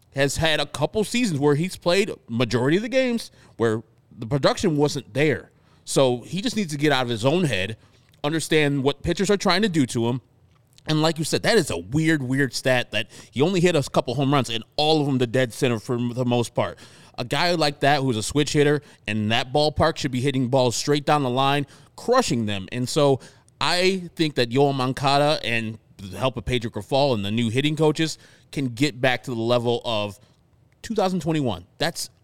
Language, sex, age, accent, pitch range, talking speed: English, male, 20-39, American, 120-150 Hz, 210 wpm